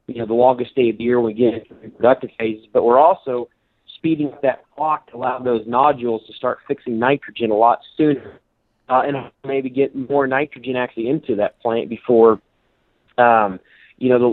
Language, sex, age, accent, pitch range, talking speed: English, male, 30-49, American, 115-135 Hz, 195 wpm